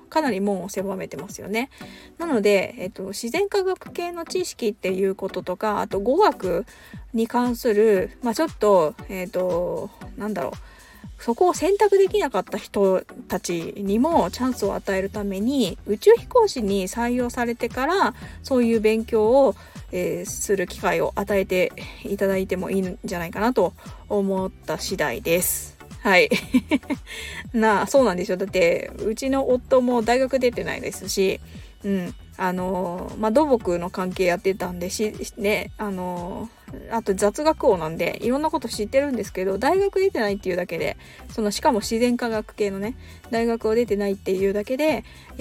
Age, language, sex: 20-39, Japanese, female